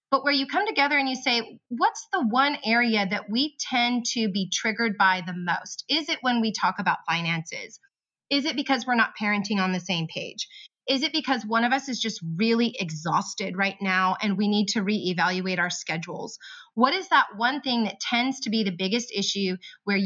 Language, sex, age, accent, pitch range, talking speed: English, female, 30-49, American, 195-250 Hz, 210 wpm